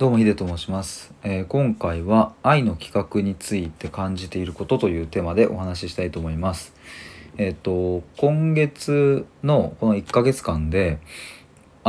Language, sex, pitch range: Japanese, male, 85-110 Hz